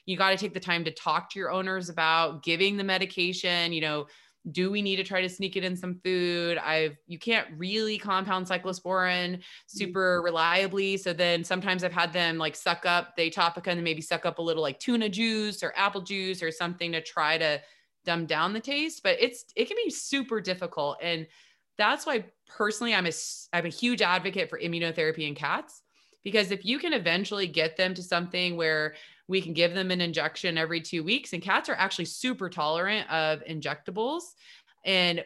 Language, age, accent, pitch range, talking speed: English, 20-39, American, 165-200 Hz, 205 wpm